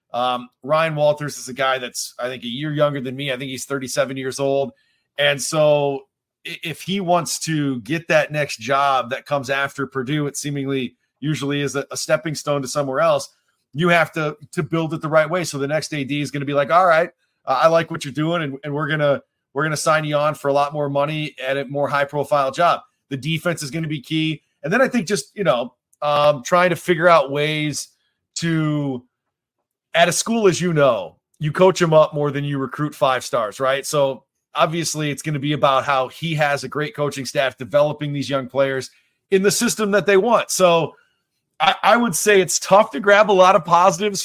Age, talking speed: 30-49, 230 wpm